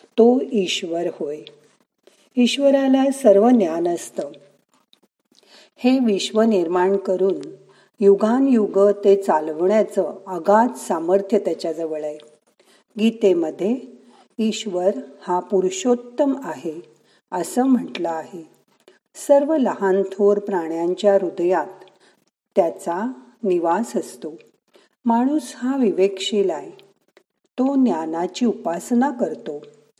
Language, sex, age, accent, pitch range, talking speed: Marathi, female, 50-69, native, 180-245 Hz, 75 wpm